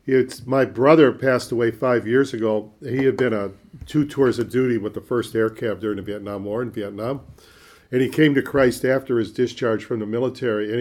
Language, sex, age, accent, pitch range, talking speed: English, male, 50-69, American, 115-140 Hz, 215 wpm